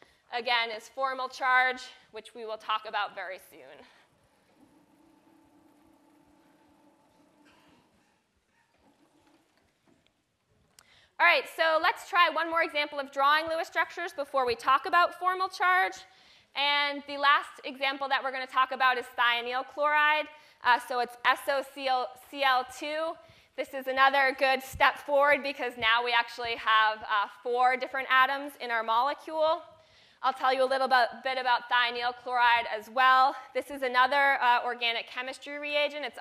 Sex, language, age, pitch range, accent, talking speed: female, English, 20-39, 245-295 Hz, American, 140 wpm